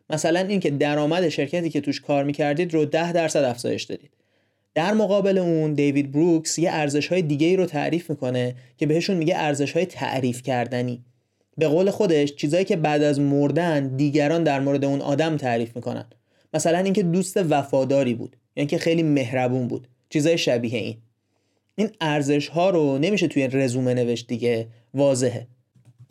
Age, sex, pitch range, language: 30-49, male, 125-165 Hz, Persian